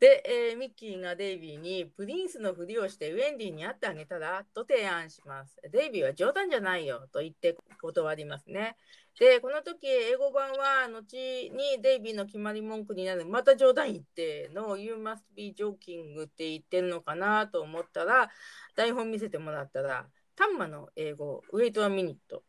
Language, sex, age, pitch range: Japanese, female, 40-59, 180-270 Hz